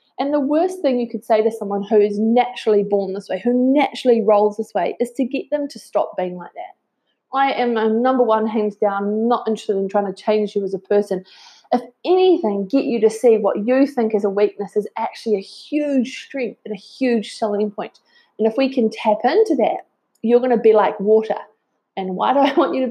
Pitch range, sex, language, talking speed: 210-255 Hz, female, English, 230 wpm